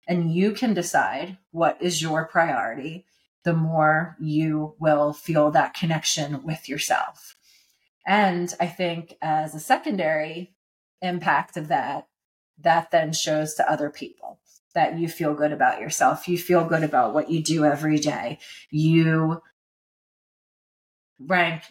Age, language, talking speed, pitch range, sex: 30-49, English, 135 wpm, 155-190 Hz, female